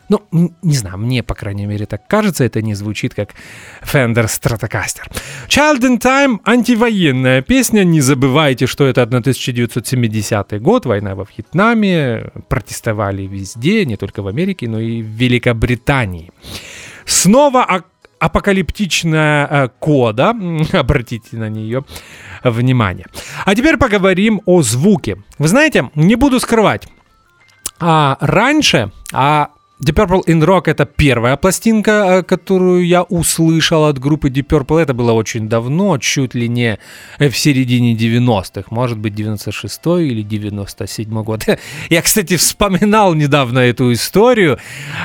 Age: 30-49